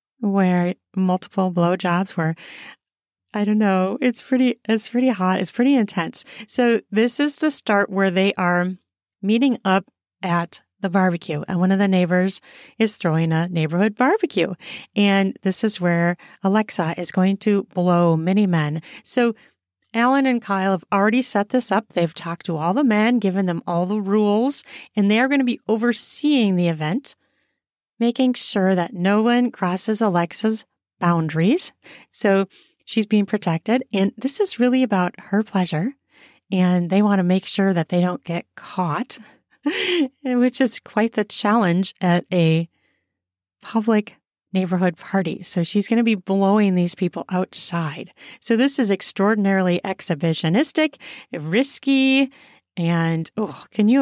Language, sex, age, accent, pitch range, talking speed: English, female, 40-59, American, 180-235 Hz, 150 wpm